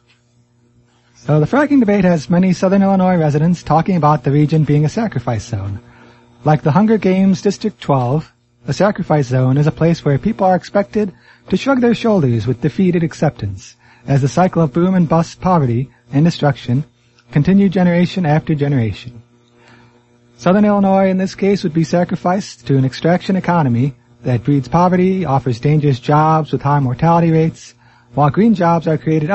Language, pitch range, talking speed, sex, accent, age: English, 120-180 Hz, 165 wpm, male, American, 30-49